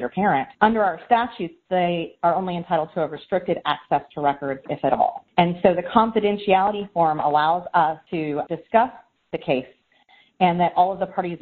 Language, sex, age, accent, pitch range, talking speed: English, female, 30-49, American, 150-190 Hz, 180 wpm